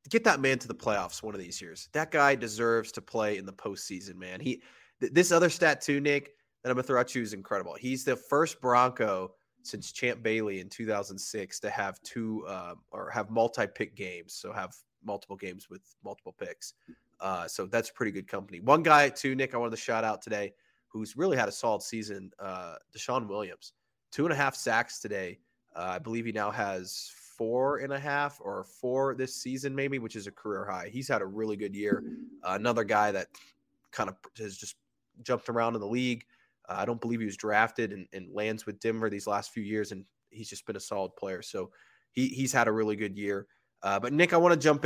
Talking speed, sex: 225 wpm, male